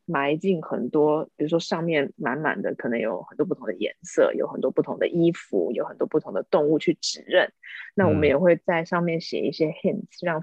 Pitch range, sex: 155-195 Hz, female